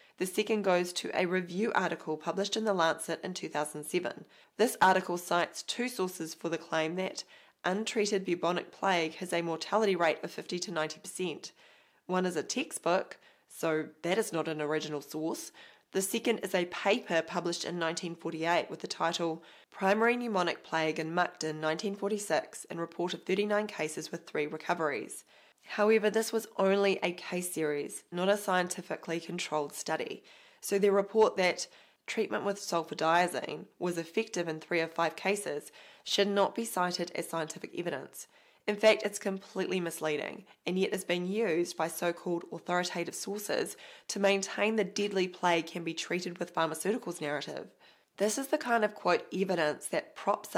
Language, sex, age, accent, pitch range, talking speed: English, female, 20-39, Australian, 165-200 Hz, 160 wpm